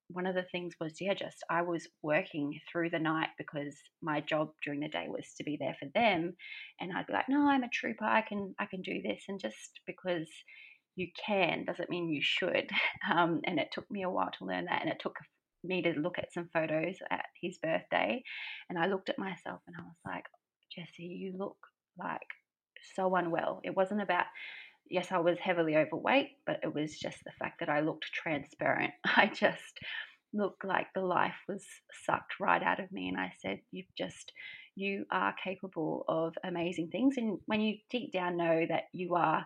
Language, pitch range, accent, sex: English, 160-195 Hz, Australian, female